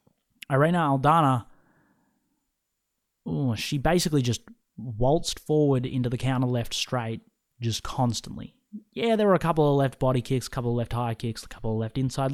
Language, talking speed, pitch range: English, 165 wpm, 120-155 Hz